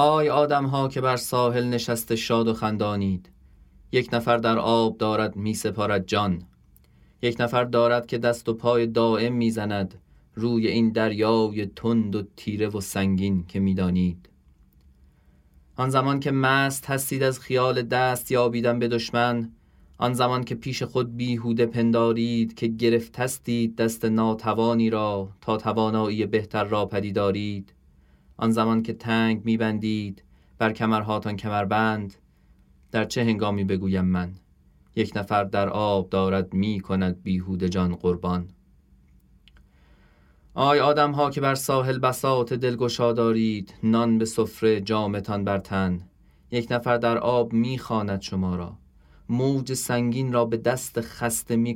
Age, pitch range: 30-49, 95-120 Hz